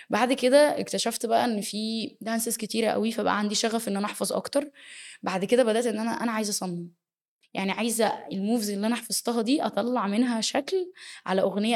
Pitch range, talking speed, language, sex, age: 200-235 Hz, 185 wpm, Arabic, female, 10-29